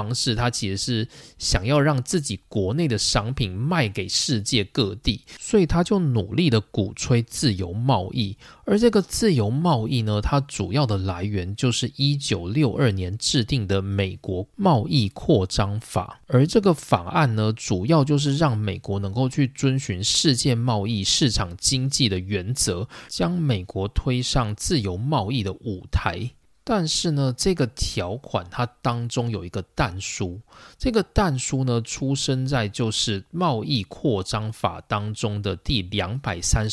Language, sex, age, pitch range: Chinese, male, 20-39, 105-145 Hz